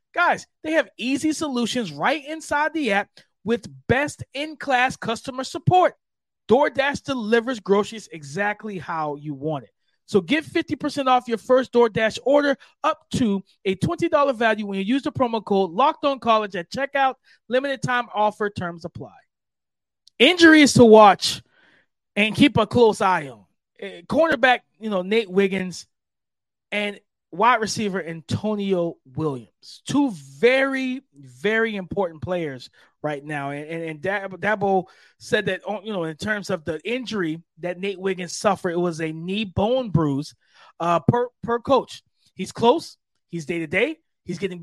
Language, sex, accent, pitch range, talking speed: English, male, American, 175-255 Hz, 150 wpm